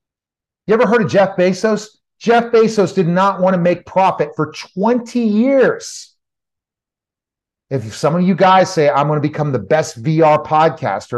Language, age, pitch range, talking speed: English, 30-49, 145-190 Hz, 165 wpm